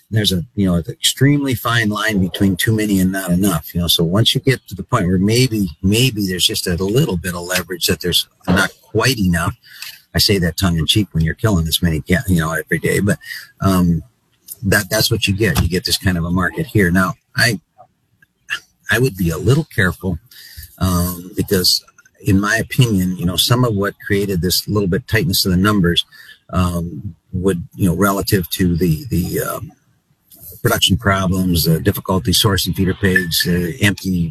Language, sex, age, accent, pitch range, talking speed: English, male, 50-69, American, 85-105 Hz, 200 wpm